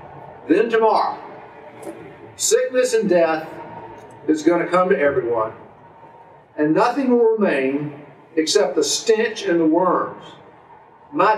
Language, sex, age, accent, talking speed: English, male, 50-69, American, 115 wpm